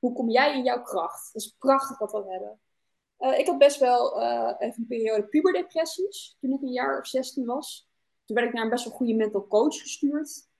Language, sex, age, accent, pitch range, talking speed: Dutch, female, 20-39, Dutch, 215-275 Hz, 225 wpm